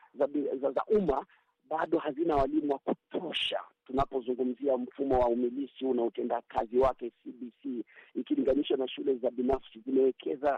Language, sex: Swahili, male